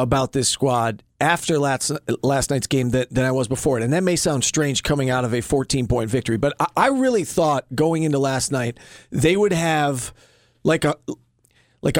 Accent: American